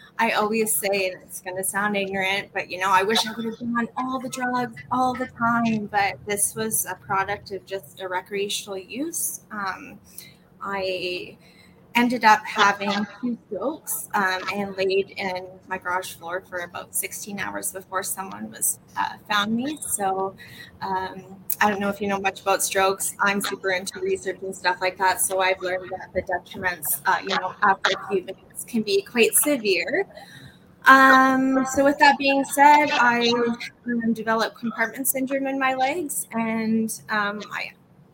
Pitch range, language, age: 190-235 Hz, English, 20-39